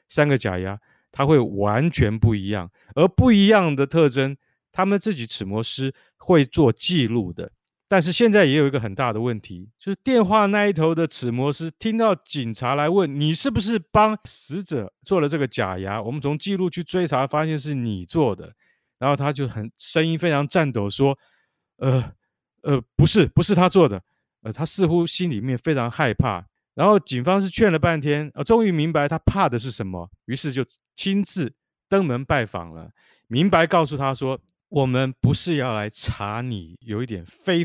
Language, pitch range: Chinese, 115-165 Hz